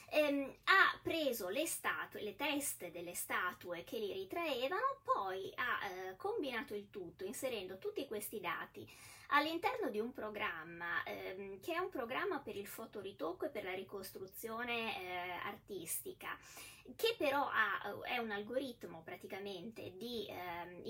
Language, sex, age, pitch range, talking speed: Italian, female, 20-39, 190-310 Hz, 140 wpm